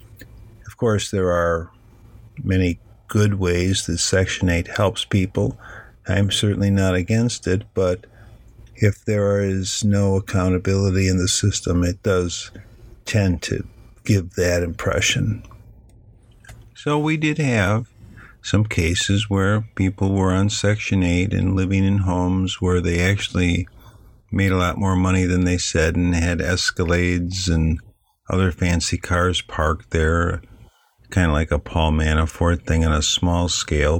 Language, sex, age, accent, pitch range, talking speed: English, male, 50-69, American, 85-110 Hz, 140 wpm